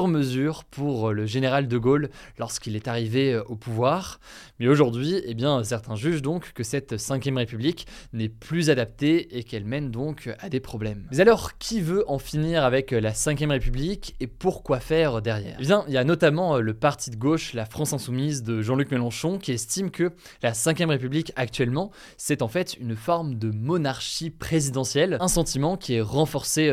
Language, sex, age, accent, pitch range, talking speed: French, male, 20-39, French, 115-150 Hz, 185 wpm